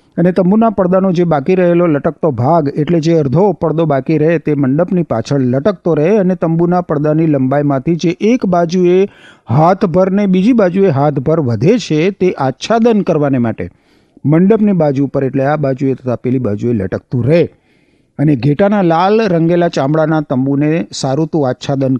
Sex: male